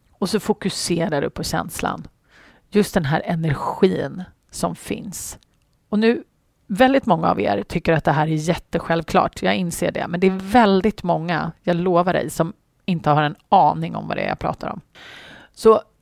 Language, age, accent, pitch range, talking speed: Swedish, 30-49, native, 155-215 Hz, 180 wpm